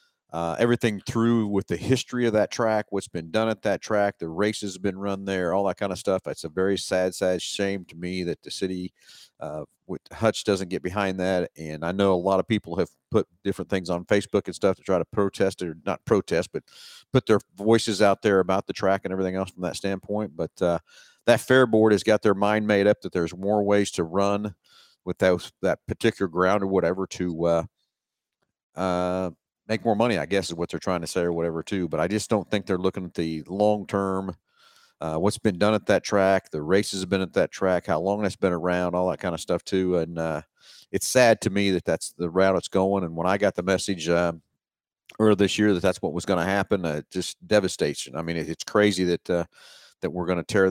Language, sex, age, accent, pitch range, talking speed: English, male, 50-69, American, 90-105 Hz, 235 wpm